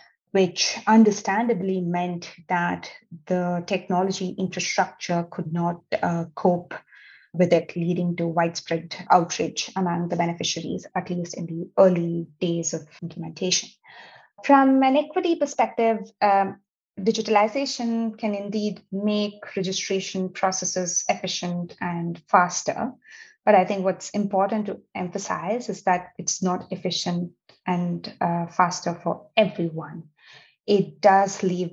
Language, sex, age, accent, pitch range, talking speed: English, female, 20-39, Indian, 175-200 Hz, 115 wpm